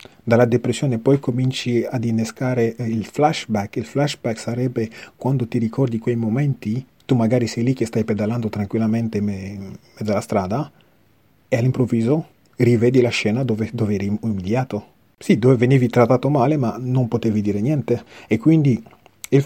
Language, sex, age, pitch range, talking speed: Italian, male, 30-49, 110-130 Hz, 150 wpm